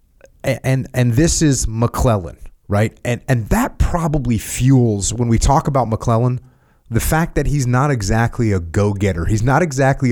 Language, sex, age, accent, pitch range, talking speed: English, male, 30-49, American, 90-120 Hz, 165 wpm